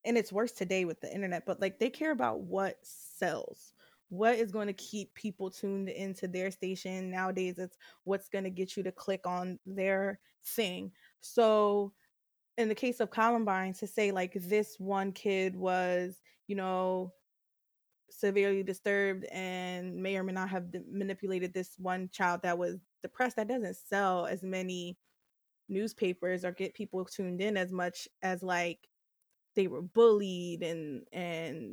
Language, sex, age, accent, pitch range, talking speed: English, female, 20-39, American, 185-210 Hz, 165 wpm